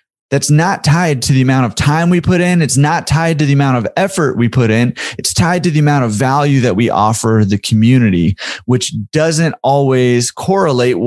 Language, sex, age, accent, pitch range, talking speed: English, male, 30-49, American, 115-150 Hz, 205 wpm